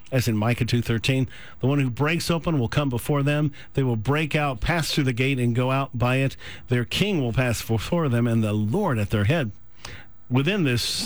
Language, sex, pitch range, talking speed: English, male, 120-155 Hz, 215 wpm